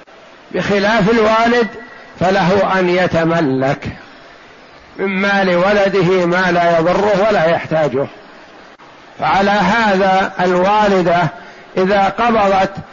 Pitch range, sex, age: 175-200 Hz, male, 50-69